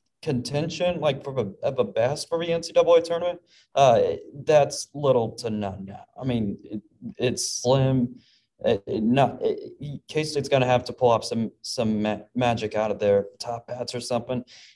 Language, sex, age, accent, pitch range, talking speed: English, male, 20-39, American, 110-130 Hz, 180 wpm